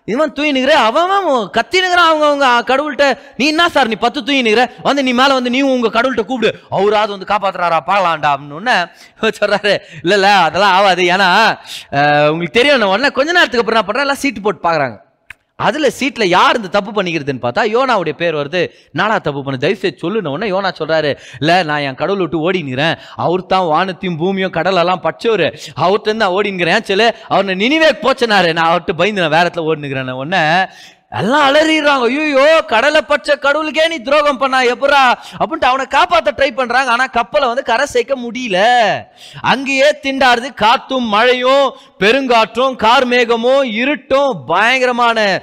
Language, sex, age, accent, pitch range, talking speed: Tamil, male, 20-39, native, 170-265 Hz, 120 wpm